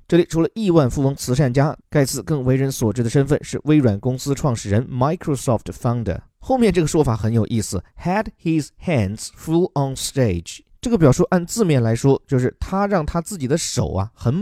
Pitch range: 120-165 Hz